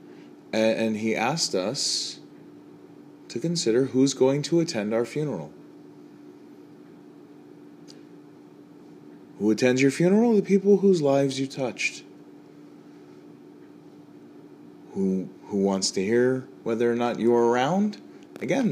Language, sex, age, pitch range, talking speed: English, male, 30-49, 95-130 Hz, 105 wpm